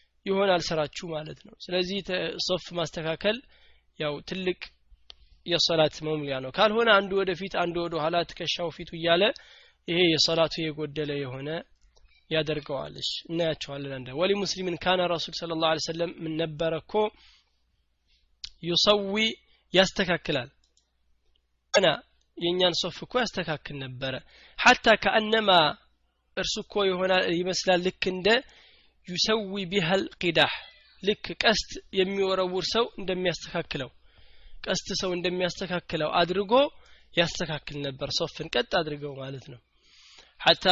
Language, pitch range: Amharic, 155-195 Hz